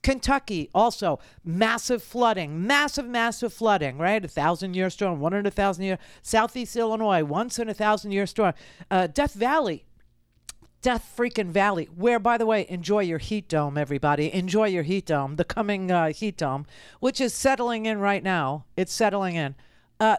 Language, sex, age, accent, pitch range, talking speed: English, female, 50-69, American, 175-250 Hz, 170 wpm